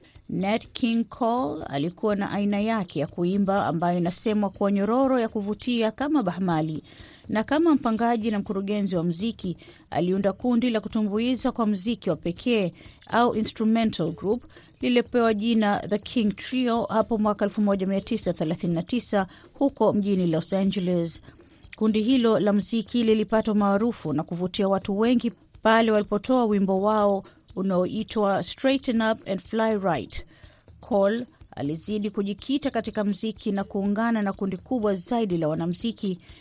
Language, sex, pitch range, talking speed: Swahili, female, 195-230 Hz, 130 wpm